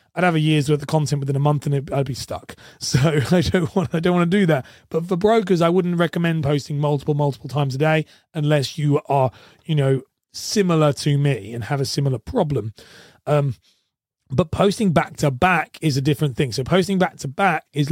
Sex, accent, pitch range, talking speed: male, British, 140-170 Hz, 220 wpm